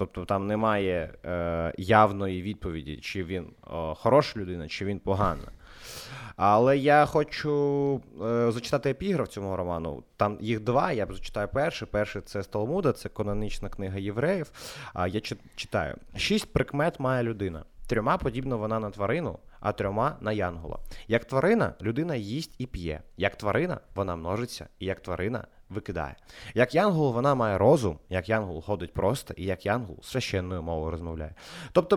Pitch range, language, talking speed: 100-130 Hz, Ukrainian, 165 wpm